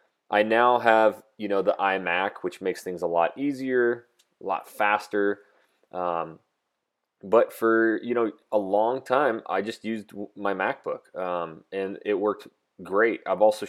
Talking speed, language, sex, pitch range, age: 160 wpm, English, male, 95-120 Hz, 20-39